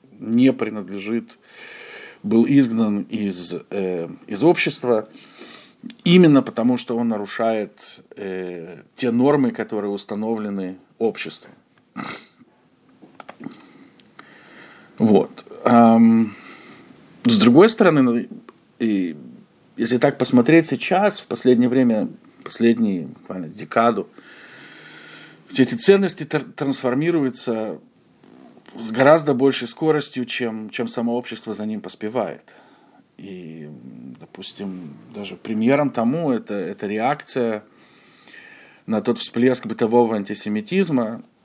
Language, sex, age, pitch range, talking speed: Russian, male, 50-69, 110-140 Hz, 85 wpm